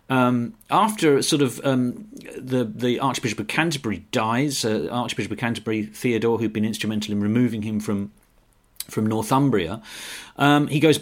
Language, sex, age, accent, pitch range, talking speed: English, male, 40-59, British, 115-170 Hz, 155 wpm